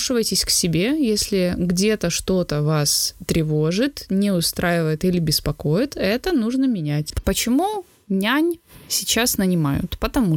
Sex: female